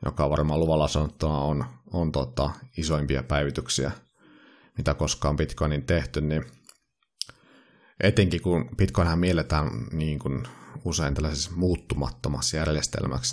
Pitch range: 70-90 Hz